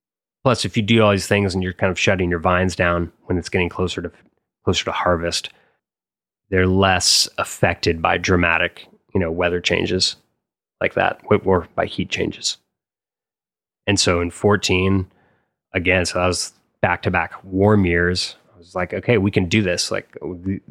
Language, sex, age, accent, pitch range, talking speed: English, male, 20-39, American, 90-100 Hz, 175 wpm